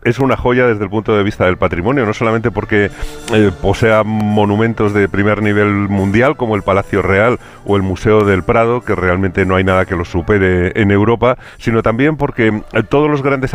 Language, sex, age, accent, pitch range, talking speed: Spanish, male, 40-59, Spanish, 100-115 Hz, 200 wpm